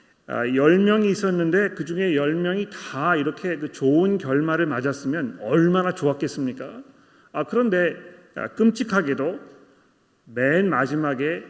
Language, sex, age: Korean, male, 40-59